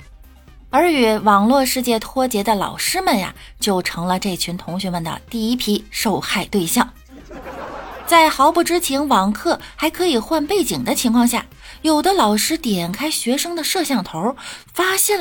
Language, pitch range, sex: Chinese, 180-295 Hz, female